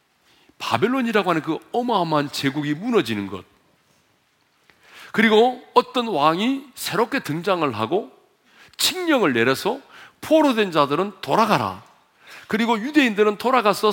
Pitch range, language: 180-295 Hz, Korean